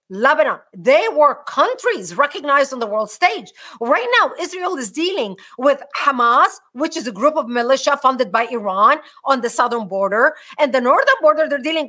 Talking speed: 175 wpm